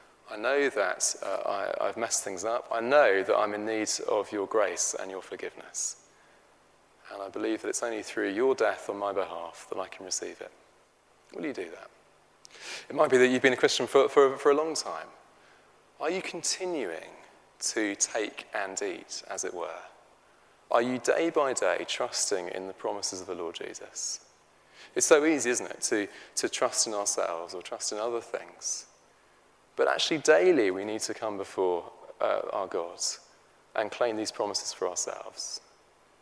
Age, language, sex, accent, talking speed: 30-49, English, male, British, 180 wpm